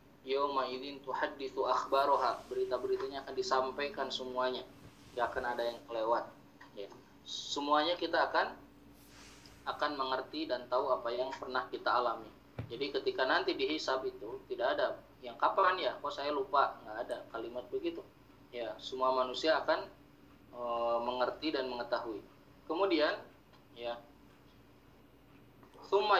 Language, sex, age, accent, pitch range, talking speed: Indonesian, male, 20-39, native, 130-190 Hz, 125 wpm